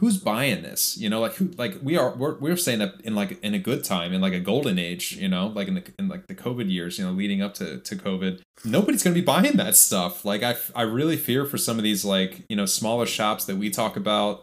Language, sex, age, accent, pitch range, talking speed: English, male, 20-39, American, 95-155 Hz, 280 wpm